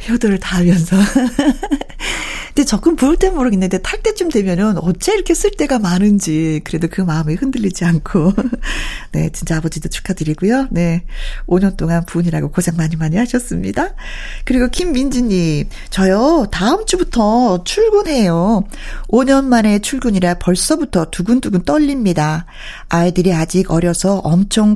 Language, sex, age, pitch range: Korean, female, 40-59, 175-265 Hz